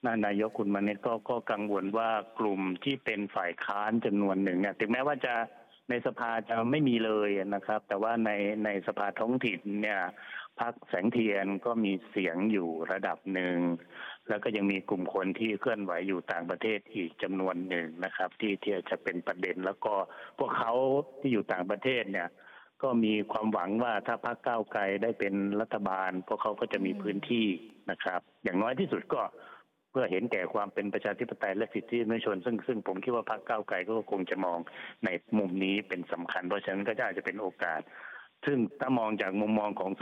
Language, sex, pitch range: Thai, male, 95-115 Hz